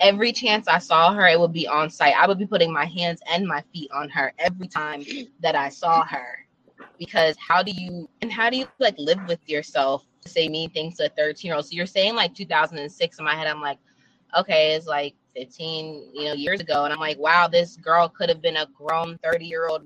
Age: 20-39